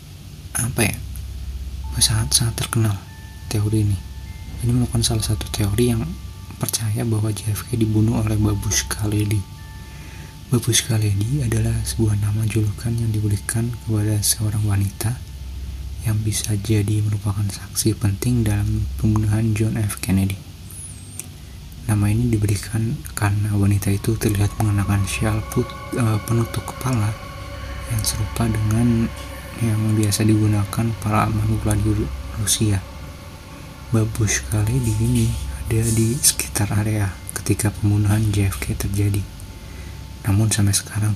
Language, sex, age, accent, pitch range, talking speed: Indonesian, male, 20-39, native, 95-110 Hz, 110 wpm